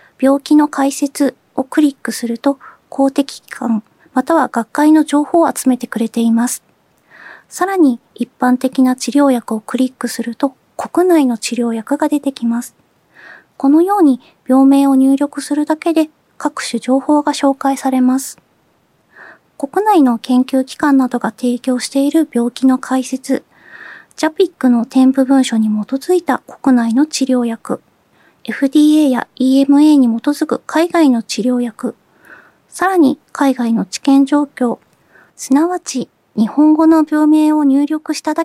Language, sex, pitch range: Japanese, female, 250-300 Hz